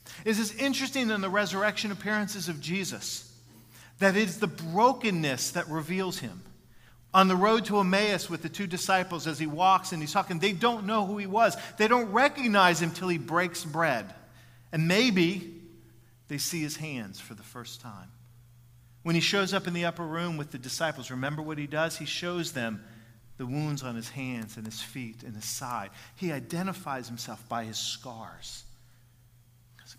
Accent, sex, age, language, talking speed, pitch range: American, male, 40-59, English, 180 wpm, 120-175 Hz